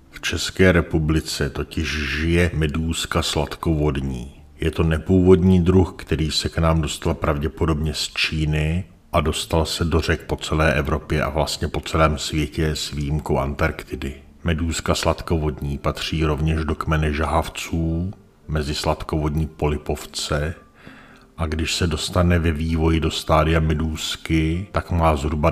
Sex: male